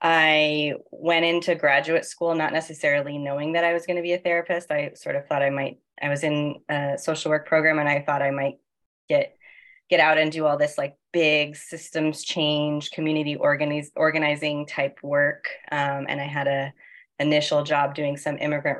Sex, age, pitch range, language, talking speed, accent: female, 20-39, 140-160 Hz, English, 190 wpm, American